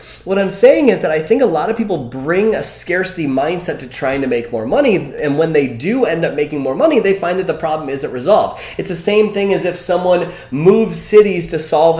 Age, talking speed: 20-39, 240 wpm